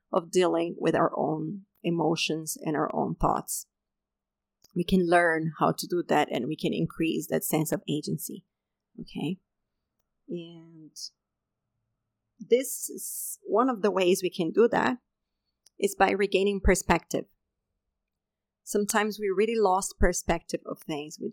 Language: English